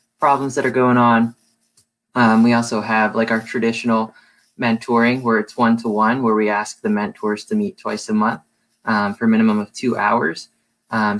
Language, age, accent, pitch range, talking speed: English, 20-39, American, 110-125 Hz, 180 wpm